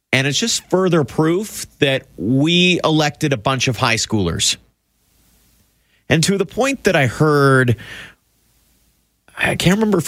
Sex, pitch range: male, 100-145 Hz